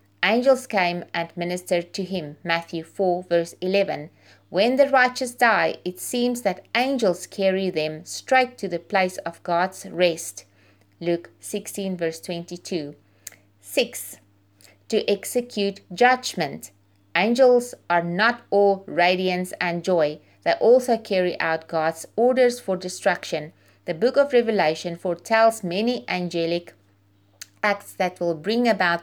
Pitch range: 160-200 Hz